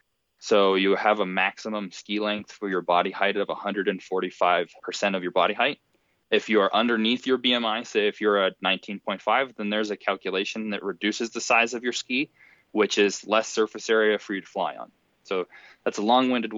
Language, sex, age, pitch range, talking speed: English, male, 20-39, 95-115 Hz, 195 wpm